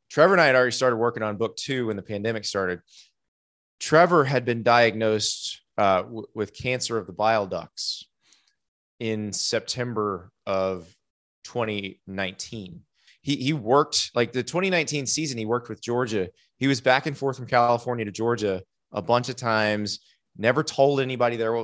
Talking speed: 165 wpm